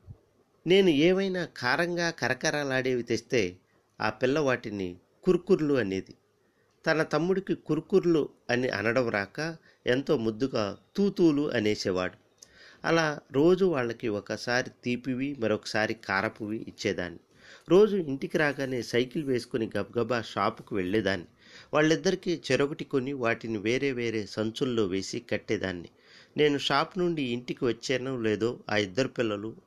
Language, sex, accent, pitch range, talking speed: Telugu, male, native, 110-150 Hz, 105 wpm